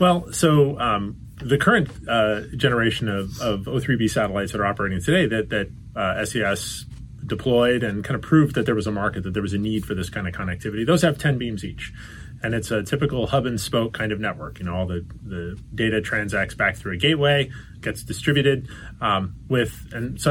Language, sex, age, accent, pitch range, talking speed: English, male, 30-49, American, 110-135 Hz, 205 wpm